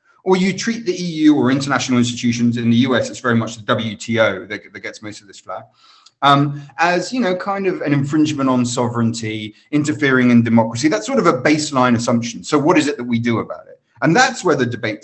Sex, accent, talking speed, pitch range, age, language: male, British, 220 wpm, 120-145 Hz, 30-49, English